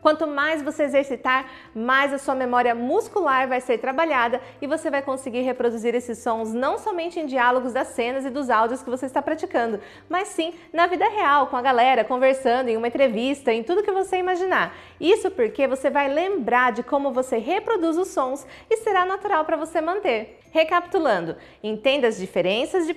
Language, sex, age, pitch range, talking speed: Portuguese, female, 20-39, 240-330 Hz, 185 wpm